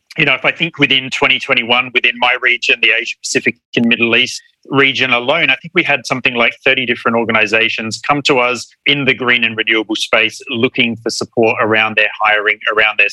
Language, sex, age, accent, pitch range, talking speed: English, male, 30-49, Australian, 115-135 Hz, 200 wpm